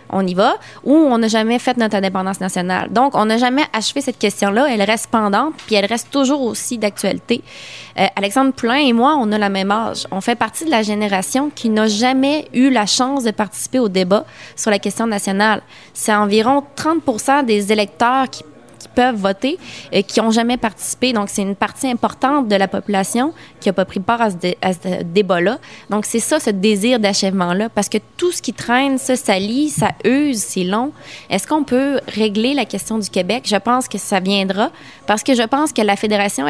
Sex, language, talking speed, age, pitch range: female, French, 210 wpm, 20-39, 200-255 Hz